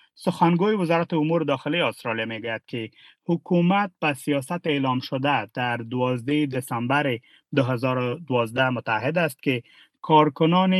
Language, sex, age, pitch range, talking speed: Persian, male, 30-49, 125-155 Hz, 110 wpm